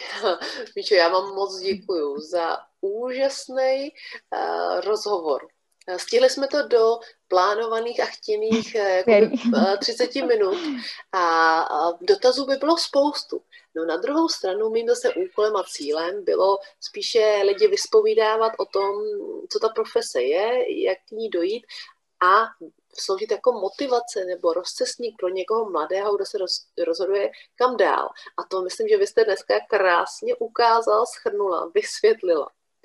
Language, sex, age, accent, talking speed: Czech, female, 30-49, native, 140 wpm